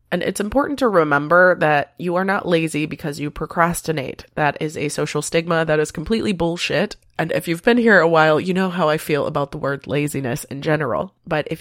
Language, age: English, 20-39